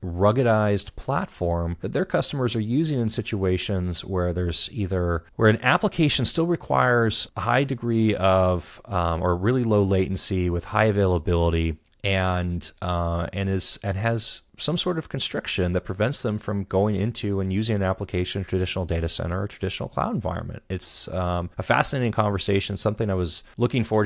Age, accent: 30-49, American